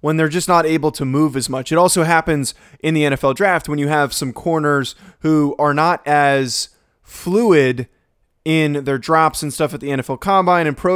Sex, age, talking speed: male, 20-39, 205 wpm